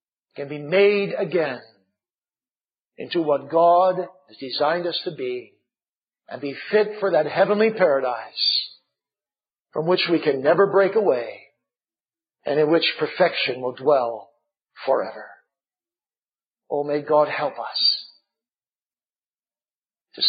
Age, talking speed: 50-69, 115 wpm